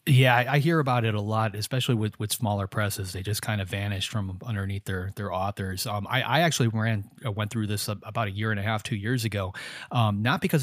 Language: English